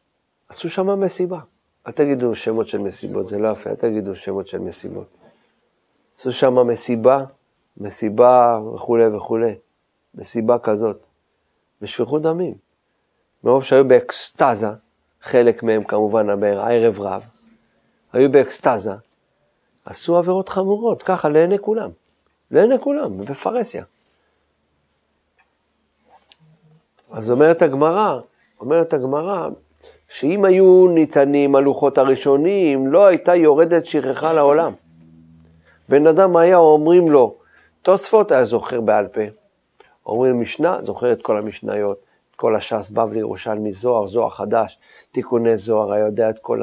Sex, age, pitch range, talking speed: male, 40-59, 105-150 Hz, 115 wpm